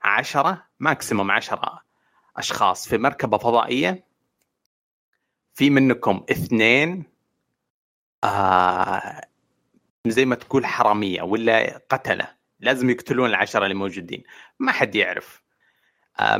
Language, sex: Arabic, male